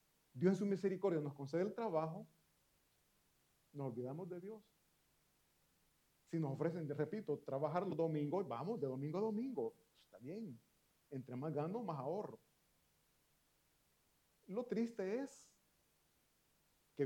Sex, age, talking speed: male, 40-59, 125 wpm